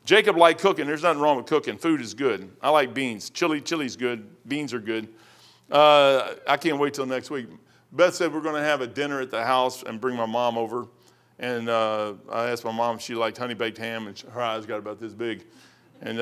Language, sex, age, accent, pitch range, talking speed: English, male, 50-69, American, 120-160 Hz, 230 wpm